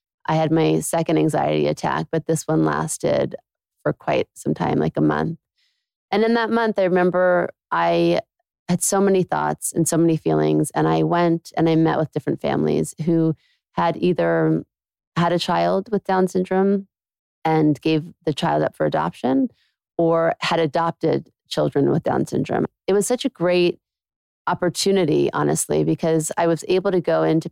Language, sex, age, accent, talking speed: English, female, 30-49, American, 170 wpm